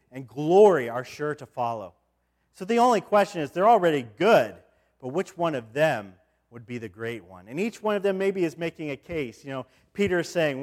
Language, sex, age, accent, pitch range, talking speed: English, male, 40-59, American, 125-200 Hz, 220 wpm